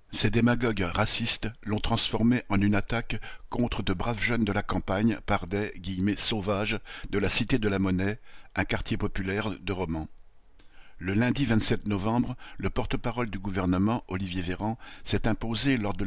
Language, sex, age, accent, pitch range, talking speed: French, male, 60-79, French, 95-115 Hz, 165 wpm